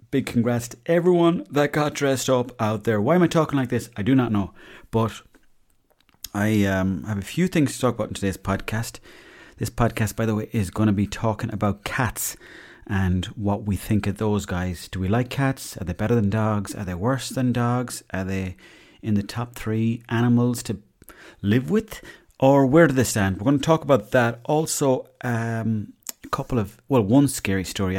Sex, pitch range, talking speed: male, 95-120 Hz, 210 wpm